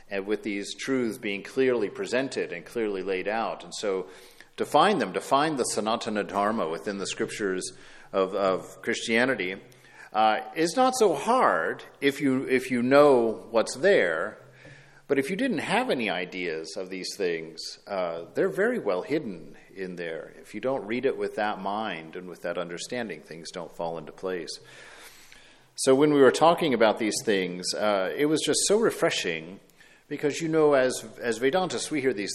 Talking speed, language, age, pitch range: 180 wpm, English, 50-69, 100-140 Hz